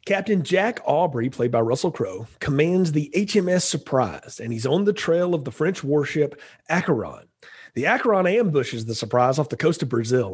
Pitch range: 125-170 Hz